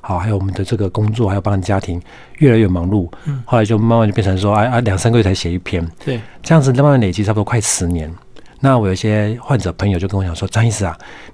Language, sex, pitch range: Chinese, male, 90-115 Hz